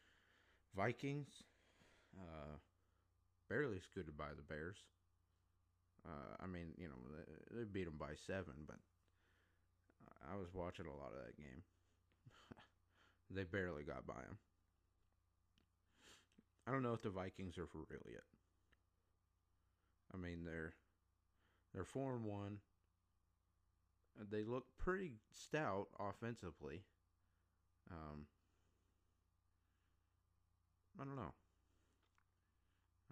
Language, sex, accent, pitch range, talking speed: English, male, American, 85-95 Hz, 100 wpm